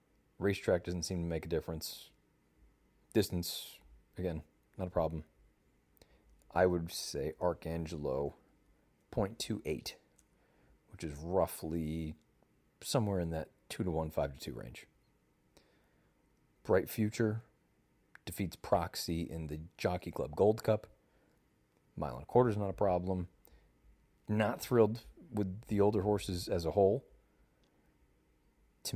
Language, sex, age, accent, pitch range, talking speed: English, male, 40-59, American, 80-105 Hz, 110 wpm